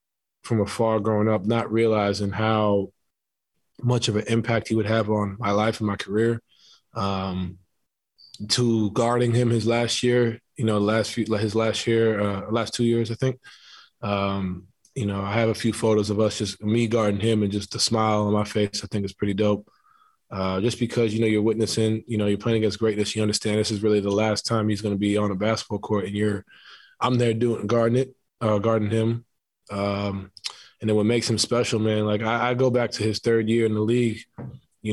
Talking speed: 215 wpm